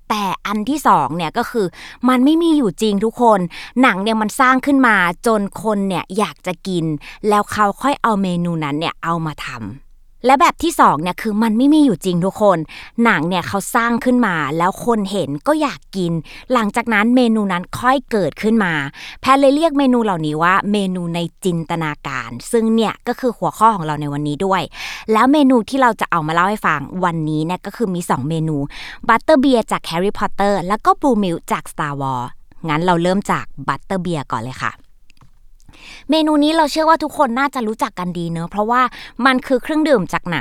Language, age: Thai, 20-39